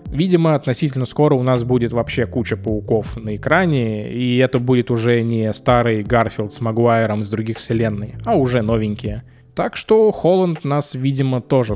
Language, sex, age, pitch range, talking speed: Russian, male, 20-39, 115-140 Hz, 165 wpm